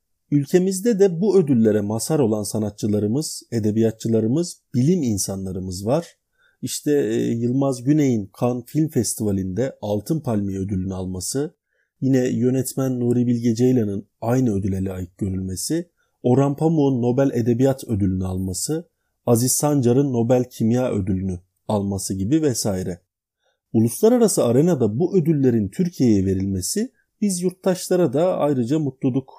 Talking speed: 110 wpm